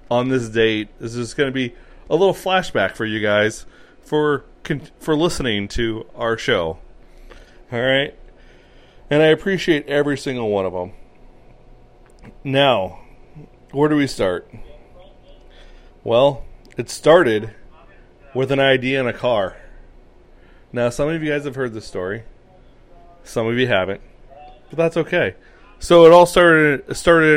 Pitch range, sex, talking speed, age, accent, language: 110-145 Hz, male, 140 wpm, 30-49, American, English